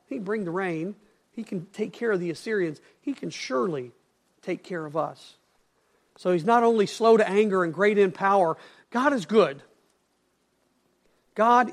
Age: 50-69